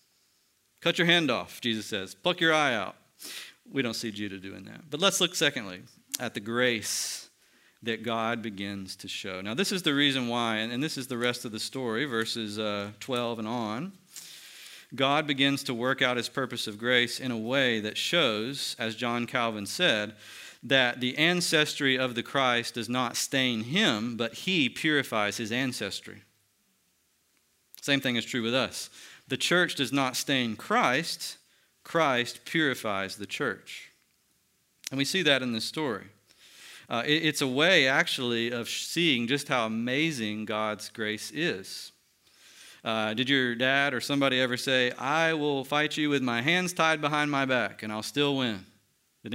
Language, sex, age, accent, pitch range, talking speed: English, male, 40-59, American, 115-150 Hz, 170 wpm